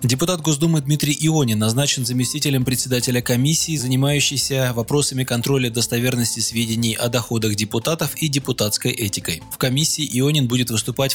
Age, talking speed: 20-39, 130 wpm